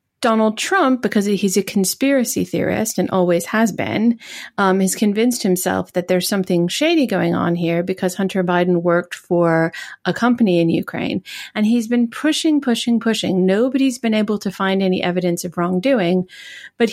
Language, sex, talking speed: English, female, 165 wpm